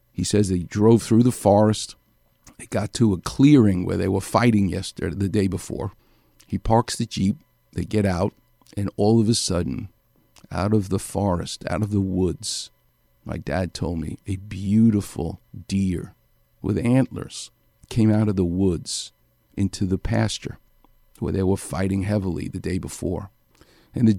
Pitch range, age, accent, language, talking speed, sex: 95-110 Hz, 50-69, American, English, 165 wpm, male